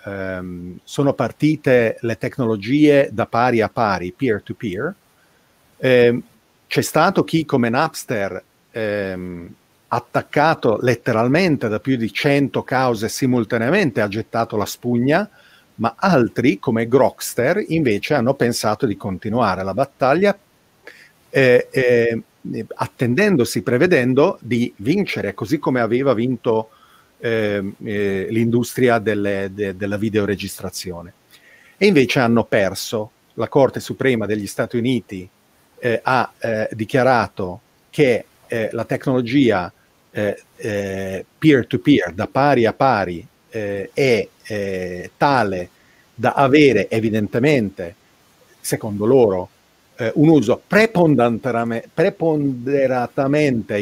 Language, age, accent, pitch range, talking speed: Italian, 40-59, native, 105-135 Hz, 105 wpm